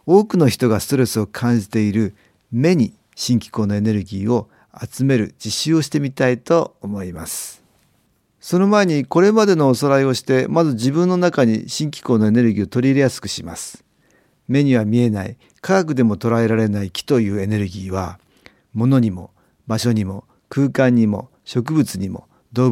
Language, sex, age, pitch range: Japanese, male, 50-69, 105-140 Hz